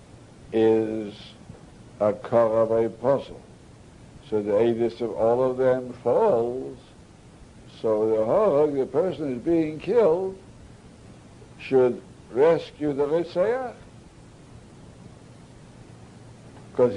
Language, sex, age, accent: English, male, 60-79, American